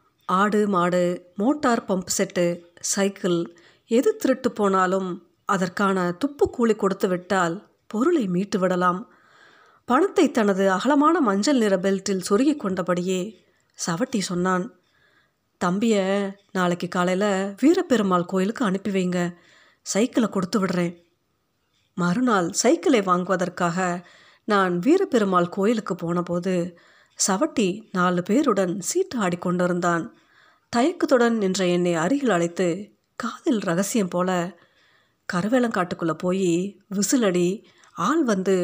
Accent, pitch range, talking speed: native, 180-235 Hz, 95 wpm